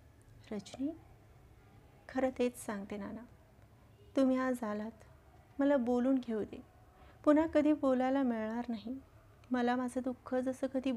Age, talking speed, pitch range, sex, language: 30-49, 100 wpm, 225-265 Hz, female, Marathi